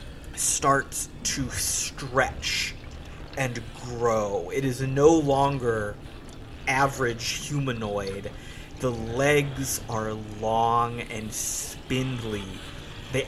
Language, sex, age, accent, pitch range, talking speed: English, male, 30-49, American, 110-135 Hz, 80 wpm